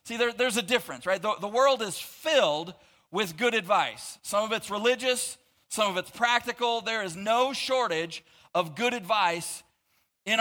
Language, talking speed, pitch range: English, 165 wpm, 190-245 Hz